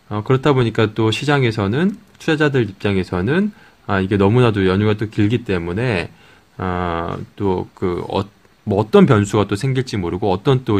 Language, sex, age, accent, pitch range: Korean, male, 20-39, native, 95-130 Hz